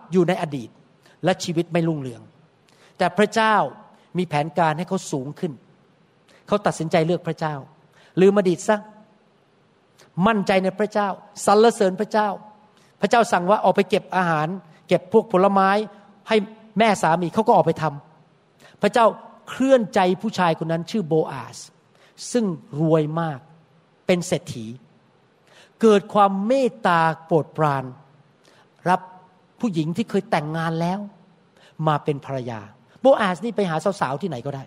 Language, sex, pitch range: Thai, male, 160-215 Hz